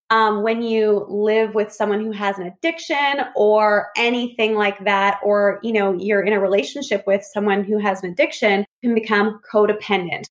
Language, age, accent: English, 20-39, American